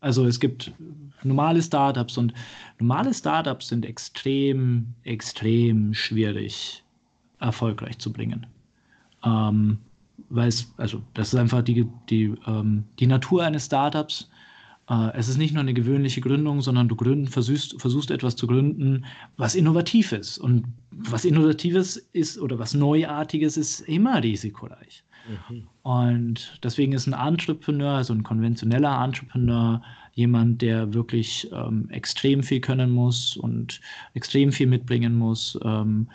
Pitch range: 115-145 Hz